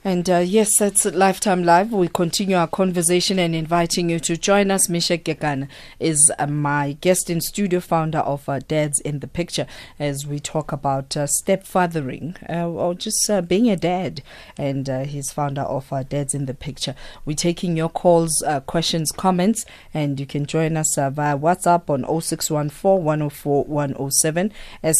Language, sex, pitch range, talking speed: English, female, 145-175 Hz, 170 wpm